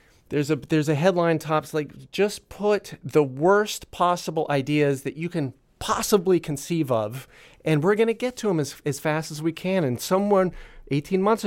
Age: 40-59